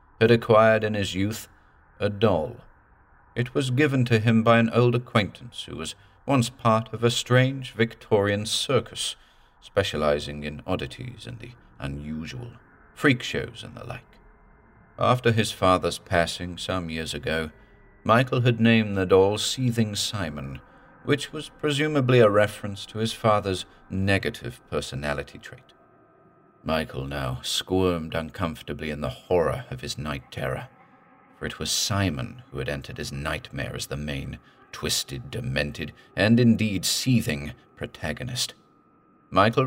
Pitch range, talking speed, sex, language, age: 85-120 Hz, 135 wpm, male, English, 40-59